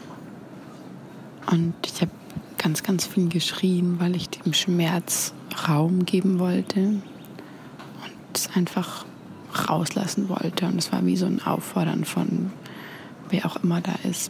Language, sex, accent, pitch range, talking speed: German, female, German, 160-190 Hz, 135 wpm